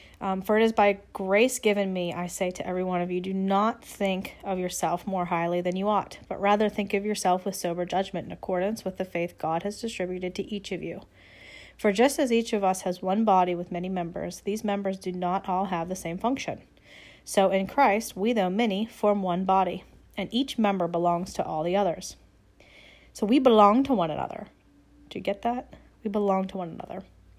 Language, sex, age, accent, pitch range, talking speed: English, female, 30-49, American, 180-215 Hz, 215 wpm